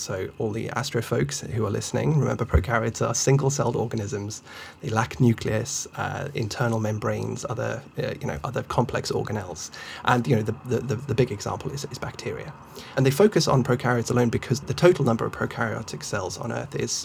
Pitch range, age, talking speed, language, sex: 115-135 Hz, 20-39, 185 wpm, English, male